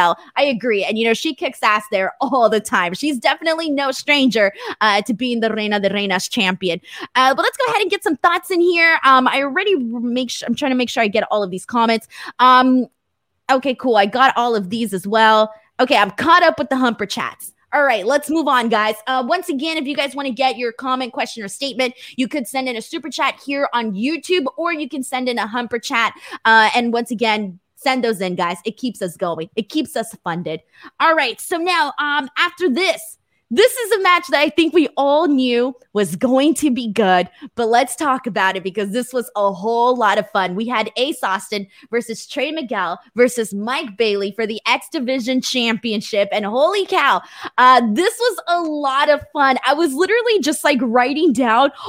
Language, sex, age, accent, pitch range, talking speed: English, female, 20-39, American, 225-295 Hz, 220 wpm